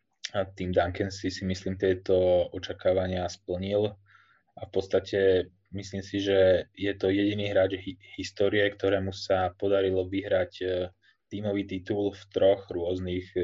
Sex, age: male, 20-39